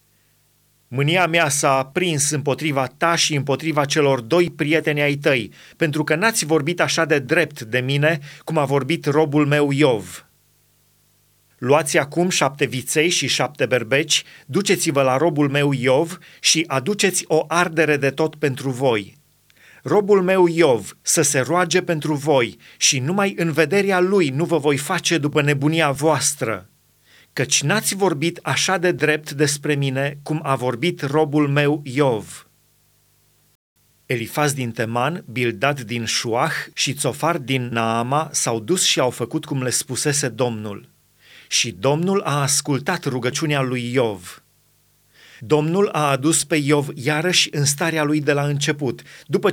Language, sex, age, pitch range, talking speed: Romanian, male, 30-49, 135-165 Hz, 145 wpm